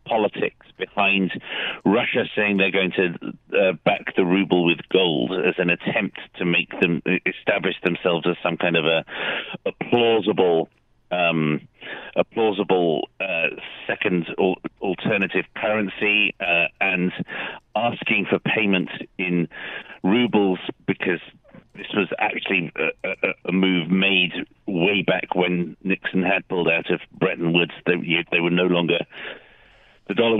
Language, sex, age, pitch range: English, male, 50-69, 85-100 Hz